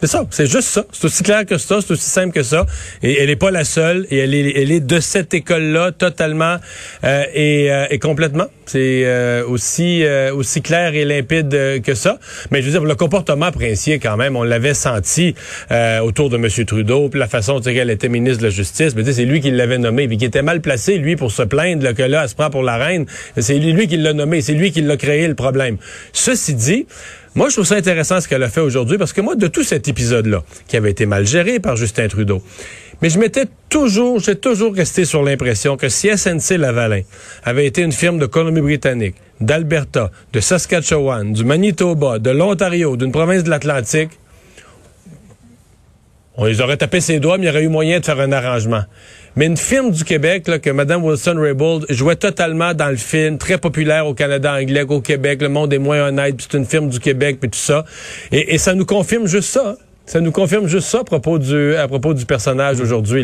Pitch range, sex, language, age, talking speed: 125-170 Hz, male, French, 40-59, 225 wpm